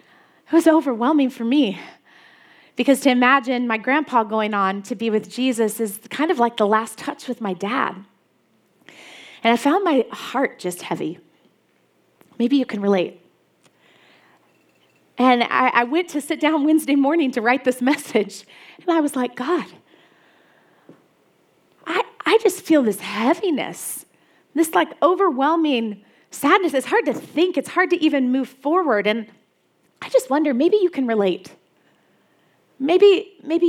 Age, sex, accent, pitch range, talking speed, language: 30-49, female, American, 235-325 Hz, 150 wpm, English